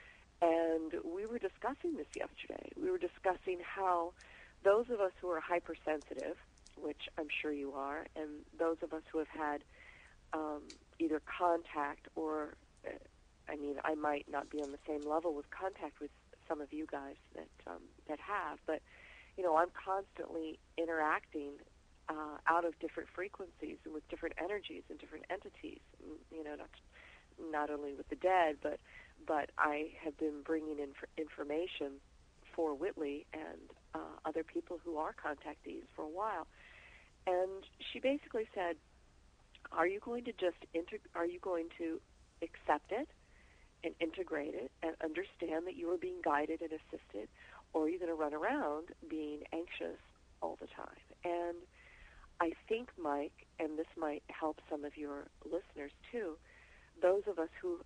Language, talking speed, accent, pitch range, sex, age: English, 160 wpm, American, 150-180 Hz, female, 40-59